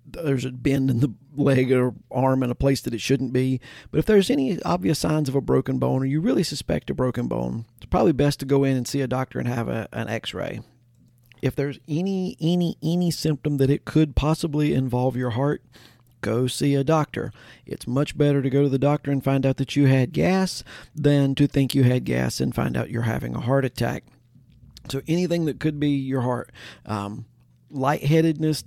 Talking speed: 215 wpm